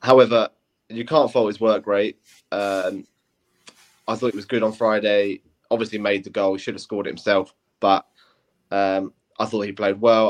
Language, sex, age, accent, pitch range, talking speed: English, male, 20-39, British, 95-115 Hz, 185 wpm